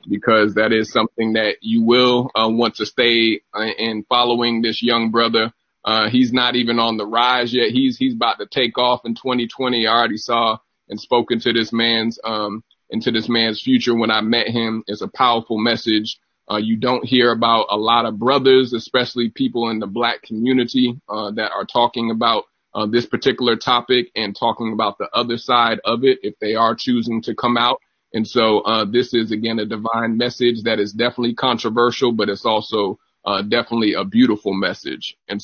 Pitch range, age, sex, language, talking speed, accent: 115-125 Hz, 30-49, male, English, 195 wpm, American